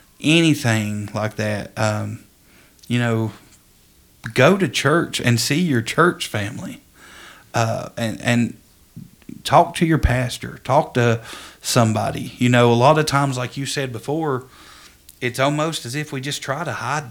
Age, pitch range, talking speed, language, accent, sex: 50-69, 115-150 Hz, 150 wpm, English, American, male